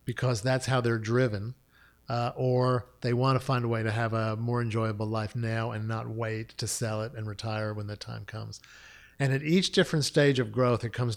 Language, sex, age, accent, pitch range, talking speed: English, male, 50-69, American, 110-135 Hz, 215 wpm